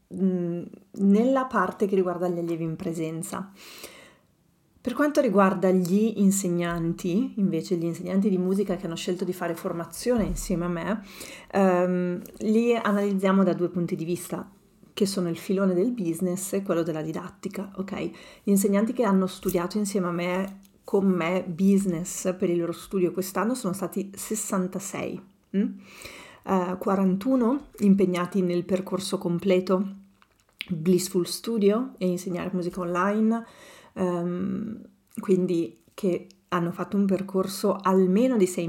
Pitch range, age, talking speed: 180-205 Hz, 40-59, 135 wpm